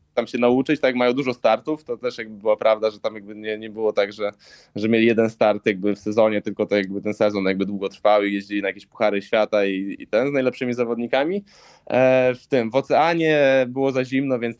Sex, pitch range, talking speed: male, 110-135 Hz, 225 wpm